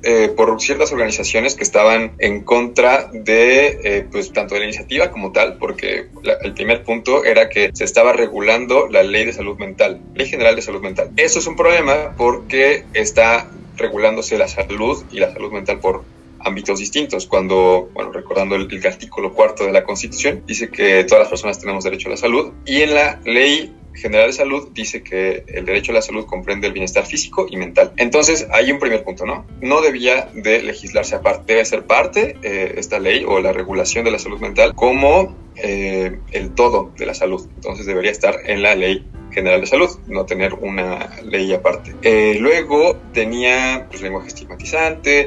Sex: male